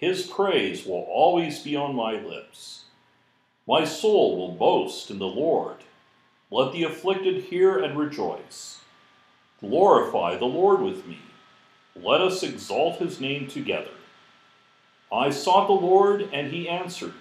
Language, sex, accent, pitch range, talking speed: English, male, American, 145-200 Hz, 135 wpm